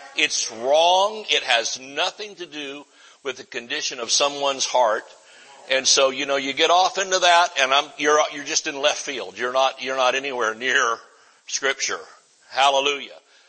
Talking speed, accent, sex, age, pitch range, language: 170 wpm, American, male, 60-79, 120-165 Hz, English